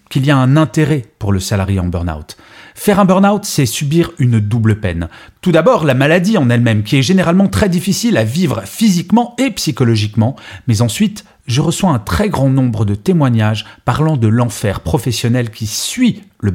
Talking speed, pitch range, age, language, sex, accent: 185 wpm, 105-160 Hz, 40-59, French, male, French